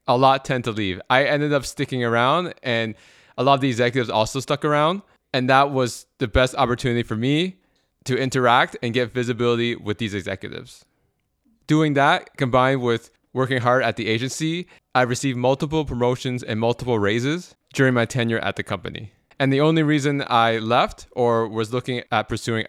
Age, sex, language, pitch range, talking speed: 20-39, male, English, 120-150 Hz, 180 wpm